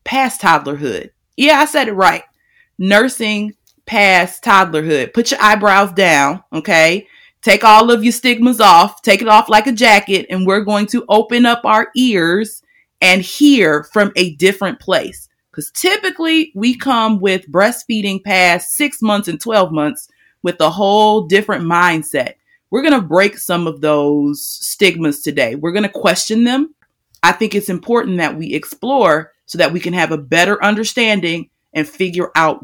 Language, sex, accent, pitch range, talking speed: English, female, American, 165-235 Hz, 165 wpm